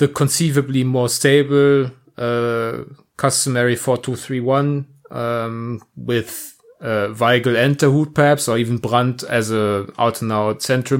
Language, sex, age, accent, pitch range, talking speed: English, male, 30-49, German, 115-130 Hz, 140 wpm